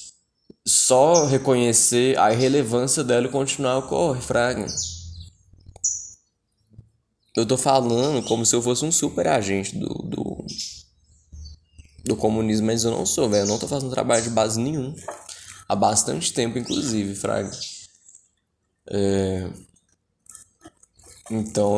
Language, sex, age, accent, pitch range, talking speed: Portuguese, male, 10-29, Brazilian, 100-120 Hz, 120 wpm